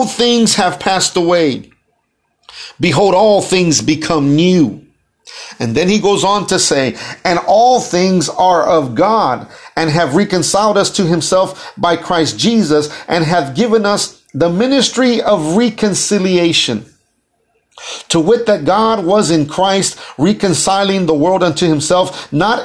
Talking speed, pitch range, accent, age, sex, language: 140 wpm, 165-210 Hz, American, 50-69, male, English